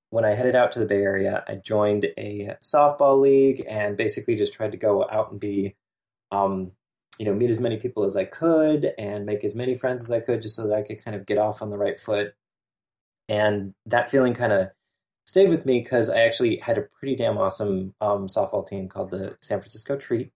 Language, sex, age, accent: English, male, 20-39, American